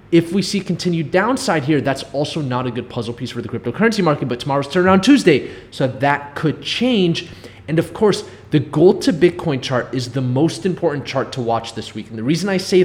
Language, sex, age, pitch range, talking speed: English, male, 20-39, 125-160 Hz, 220 wpm